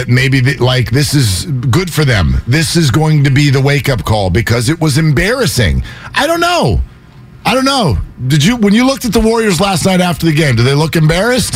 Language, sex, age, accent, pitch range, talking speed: English, male, 50-69, American, 130-180 Hz, 220 wpm